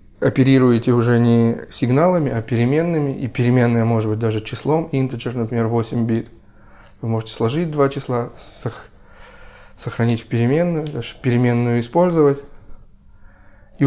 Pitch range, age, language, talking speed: 115-140 Hz, 20-39, Ukrainian, 120 wpm